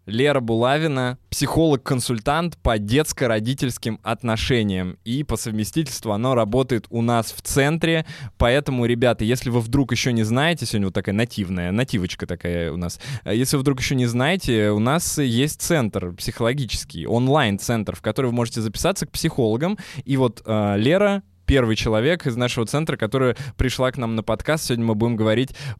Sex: male